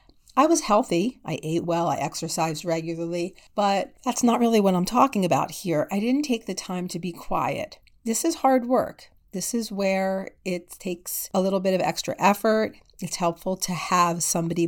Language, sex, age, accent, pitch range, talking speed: English, female, 40-59, American, 170-210 Hz, 190 wpm